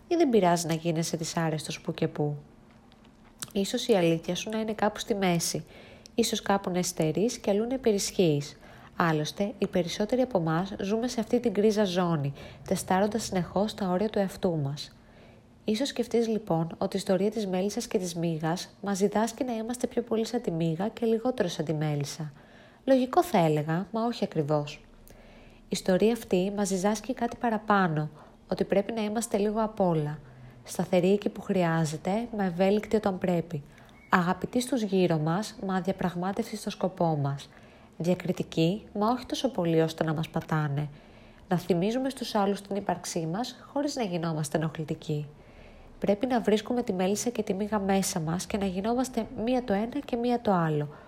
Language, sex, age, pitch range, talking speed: Greek, female, 20-39, 165-220 Hz, 175 wpm